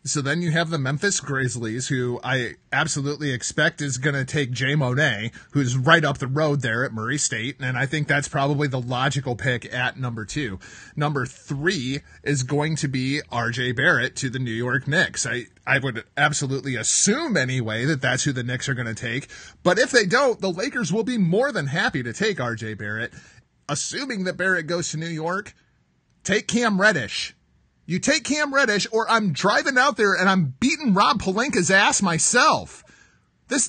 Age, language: 30-49, English